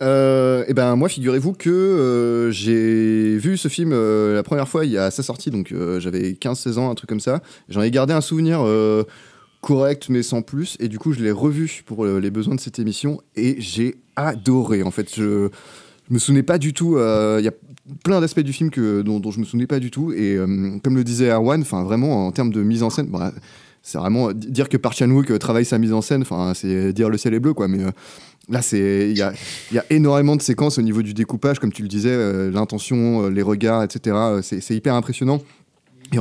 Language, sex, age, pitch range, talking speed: French, male, 20-39, 105-130 Hz, 240 wpm